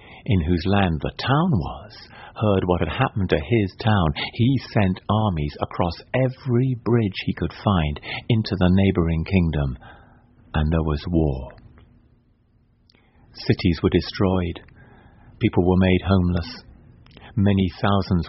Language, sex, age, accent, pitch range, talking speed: English, male, 50-69, British, 85-115 Hz, 130 wpm